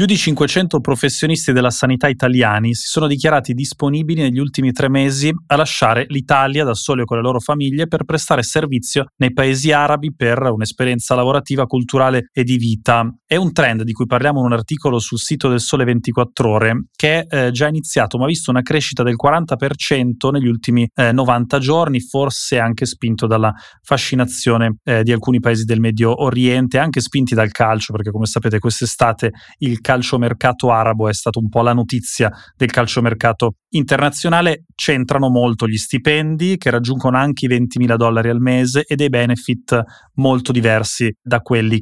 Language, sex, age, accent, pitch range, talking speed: Italian, male, 20-39, native, 115-140 Hz, 180 wpm